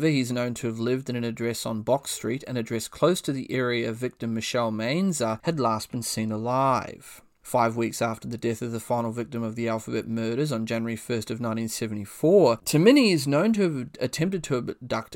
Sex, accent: male, Australian